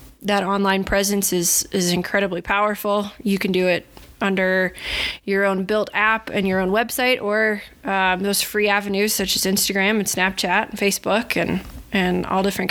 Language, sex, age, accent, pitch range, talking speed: English, female, 20-39, American, 185-205 Hz, 170 wpm